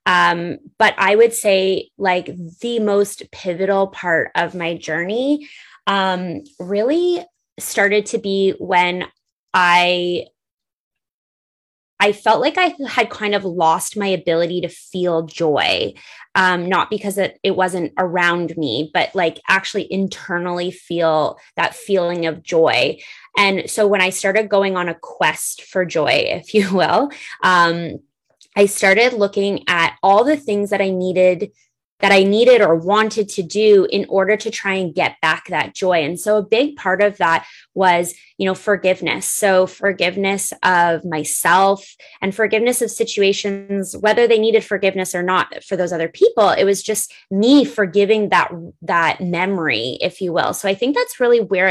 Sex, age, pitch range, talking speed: female, 20-39, 180-210 Hz, 160 wpm